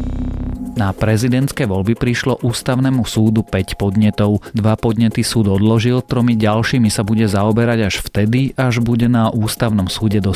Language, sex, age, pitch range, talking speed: Slovak, male, 30-49, 100-115 Hz, 145 wpm